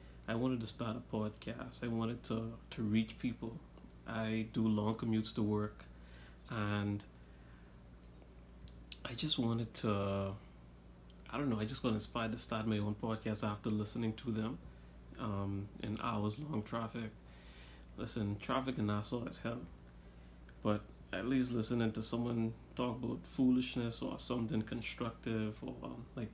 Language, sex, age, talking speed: English, male, 30-49, 140 wpm